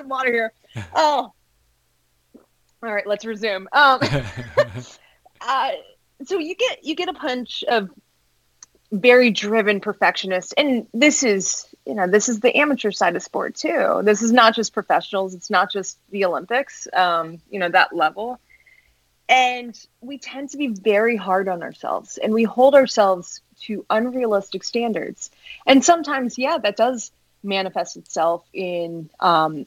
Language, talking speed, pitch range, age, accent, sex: English, 150 wpm, 185-240 Hz, 20-39, American, female